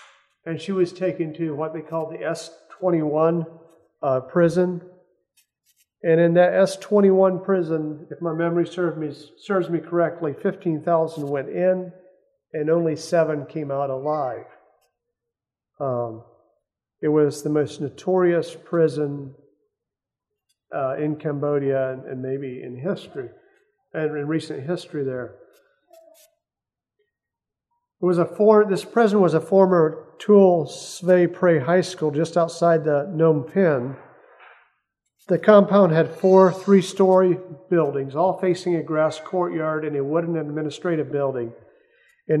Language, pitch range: English, 155-190 Hz